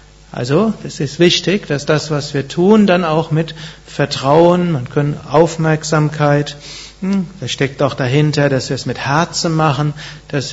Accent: German